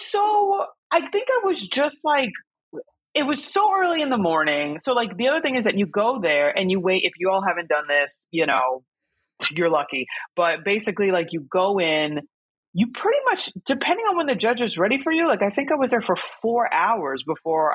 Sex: female